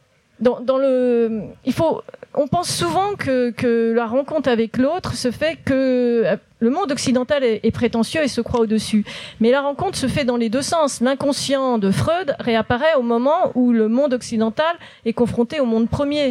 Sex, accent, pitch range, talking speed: female, French, 210-260 Hz, 190 wpm